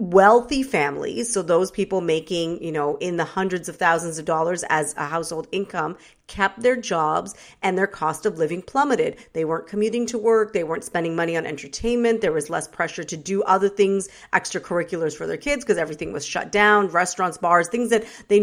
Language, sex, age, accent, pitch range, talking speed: English, female, 40-59, American, 170-215 Hz, 200 wpm